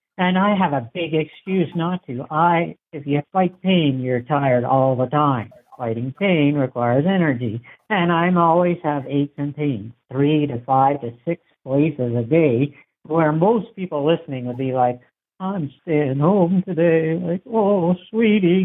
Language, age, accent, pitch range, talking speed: English, 60-79, American, 120-160 Hz, 165 wpm